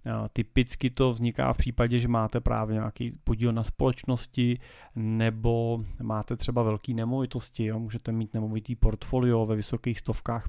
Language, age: Czech, 30-49